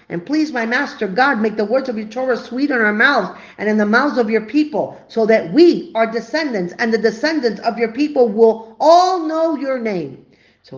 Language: English